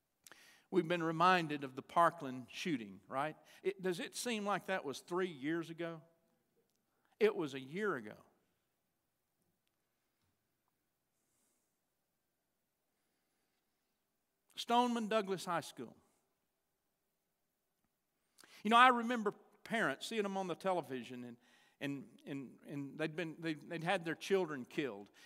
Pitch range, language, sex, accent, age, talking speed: 155-205 Hz, English, male, American, 50-69, 115 wpm